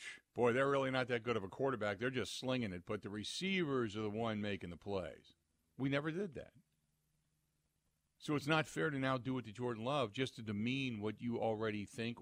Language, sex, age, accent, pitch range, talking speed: English, male, 50-69, American, 110-150 Hz, 215 wpm